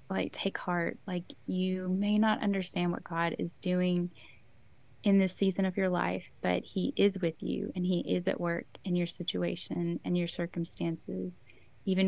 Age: 20-39